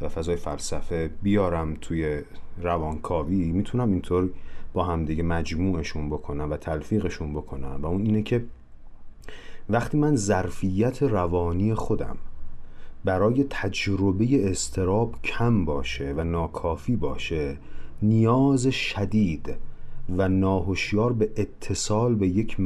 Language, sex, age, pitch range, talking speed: Persian, male, 40-59, 85-110 Hz, 105 wpm